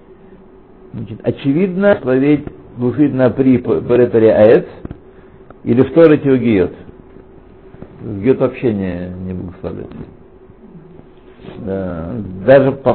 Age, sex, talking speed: 60-79, male, 90 wpm